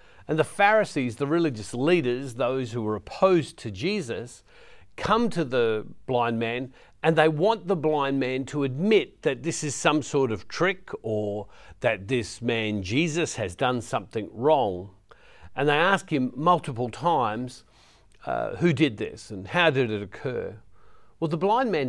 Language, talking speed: English, 165 wpm